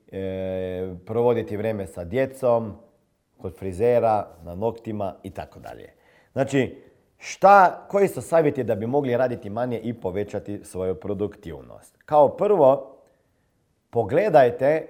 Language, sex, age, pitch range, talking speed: Croatian, male, 50-69, 105-145 Hz, 120 wpm